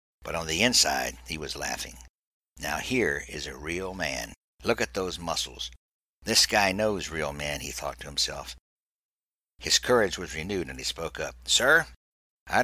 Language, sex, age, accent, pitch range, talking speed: English, male, 60-79, American, 75-125 Hz, 170 wpm